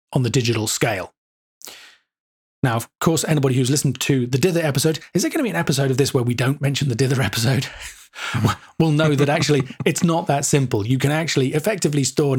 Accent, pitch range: British, 120-145 Hz